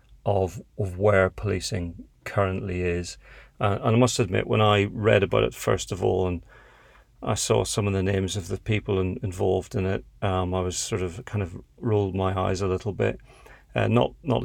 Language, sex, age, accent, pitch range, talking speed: English, male, 40-59, British, 90-105 Hz, 205 wpm